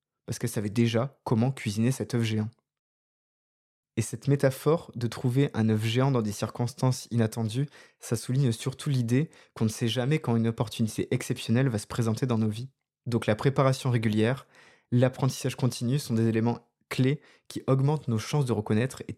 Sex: male